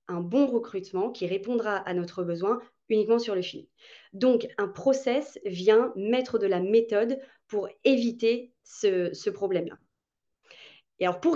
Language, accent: French, French